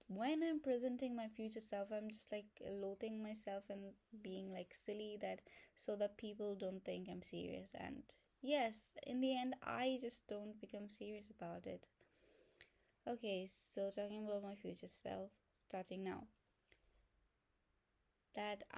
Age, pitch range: 20-39, 190-225 Hz